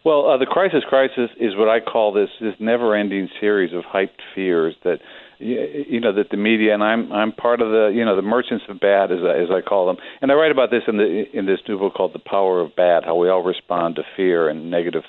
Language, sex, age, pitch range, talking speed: English, male, 50-69, 100-125 Hz, 260 wpm